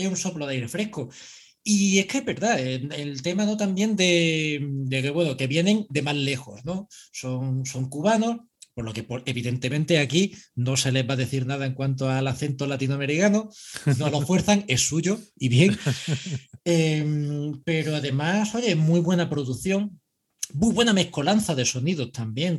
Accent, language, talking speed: Spanish, Spanish, 175 wpm